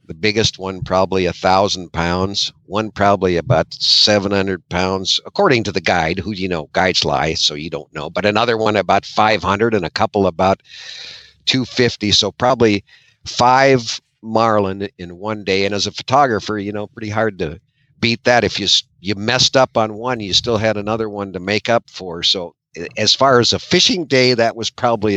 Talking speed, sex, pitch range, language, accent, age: 190 wpm, male, 95-120 Hz, English, American, 50-69